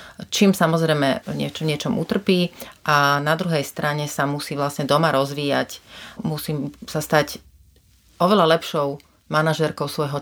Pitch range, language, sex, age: 140-160 Hz, Slovak, female, 30-49